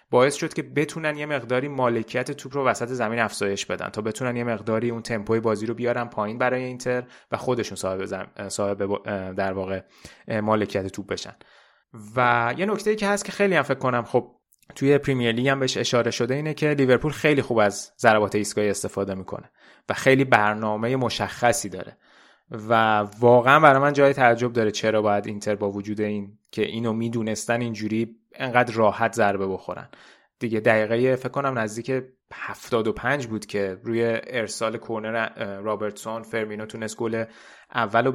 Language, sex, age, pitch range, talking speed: Persian, male, 20-39, 110-140 Hz, 170 wpm